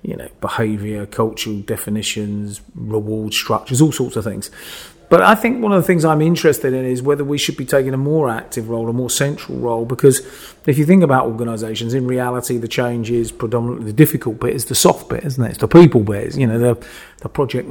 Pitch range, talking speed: 115-135 Hz, 220 wpm